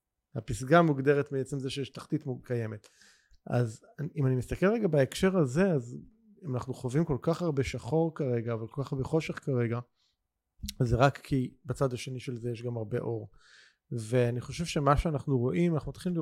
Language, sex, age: Hebrew, male, 30-49